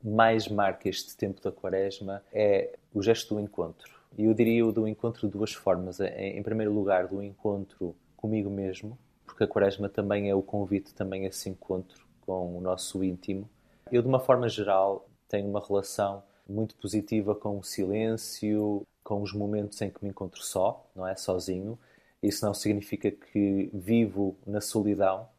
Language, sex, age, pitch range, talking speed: Portuguese, male, 20-39, 100-110 Hz, 175 wpm